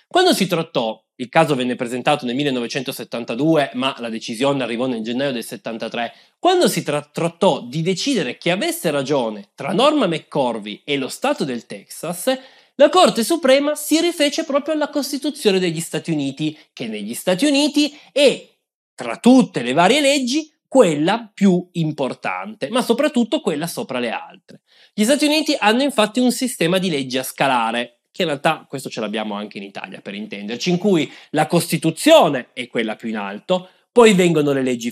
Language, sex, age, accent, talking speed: Italian, male, 20-39, native, 170 wpm